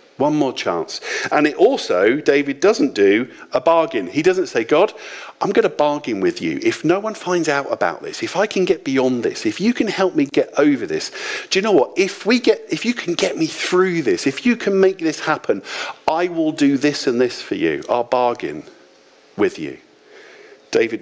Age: 50-69